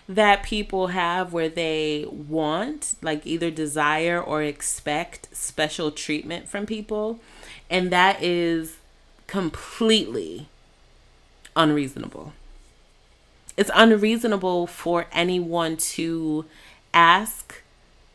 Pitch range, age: 150-195 Hz, 30-49